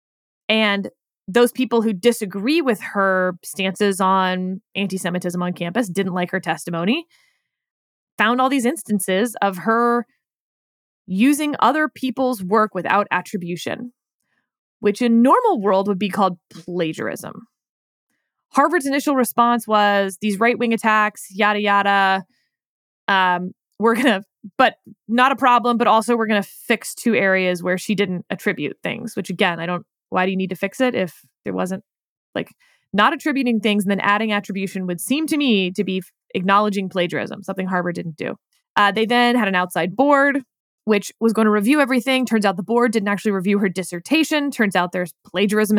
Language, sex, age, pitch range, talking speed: English, female, 20-39, 190-250 Hz, 165 wpm